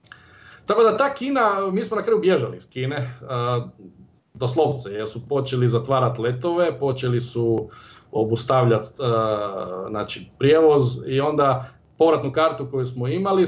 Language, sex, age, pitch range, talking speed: Croatian, male, 50-69, 115-140 Hz, 130 wpm